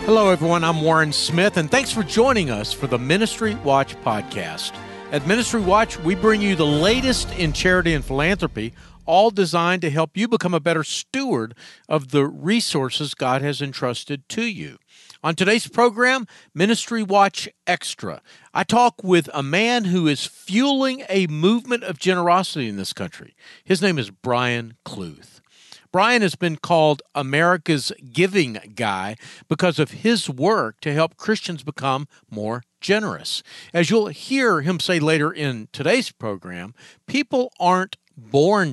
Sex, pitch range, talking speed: male, 145-210 Hz, 155 wpm